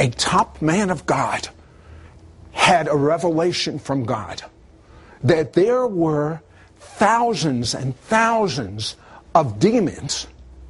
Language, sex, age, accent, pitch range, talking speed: English, male, 60-79, American, 140-210 Hz, 100 wpm